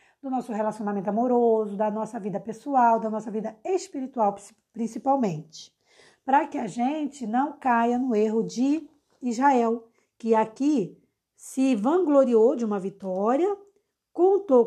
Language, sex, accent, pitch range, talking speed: Portuguese, female, Brazilian, 210-250 Hz, 125 wpm